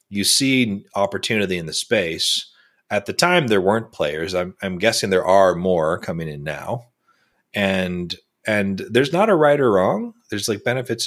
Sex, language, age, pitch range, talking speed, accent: male, English, 30-49, 85-115 Hz, 175 wpm, American